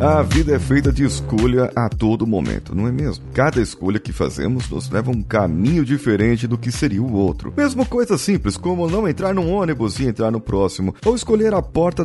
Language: Portuguese